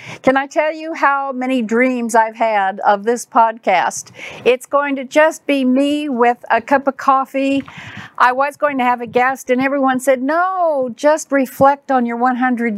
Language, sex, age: English, female, 50-69